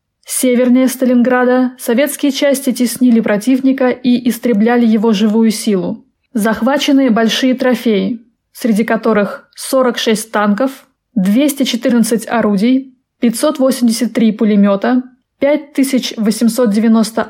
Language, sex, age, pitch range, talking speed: Russian, female, 20-39, 220-255 Hz, 80 wpm